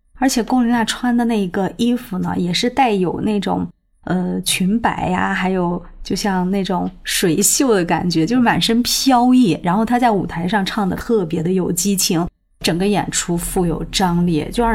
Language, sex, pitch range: Chinese, female, 170-205 Hz